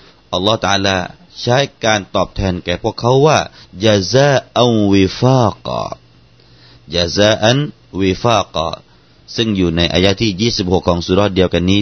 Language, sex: Thai, male